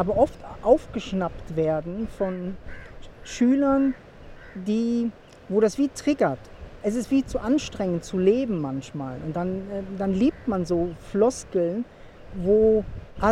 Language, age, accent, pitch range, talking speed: German, 40-59, German, 165-225 Hz, 120 wpm